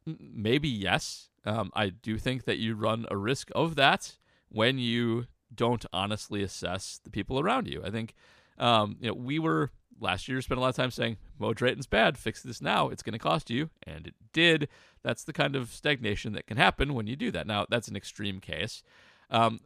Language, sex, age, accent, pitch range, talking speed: English, male, 40-59, American, 100-130 Hz, 210 wpm